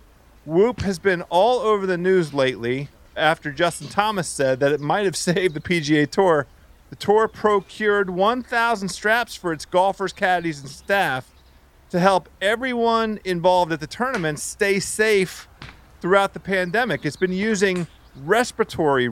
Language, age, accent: English, 40-59, American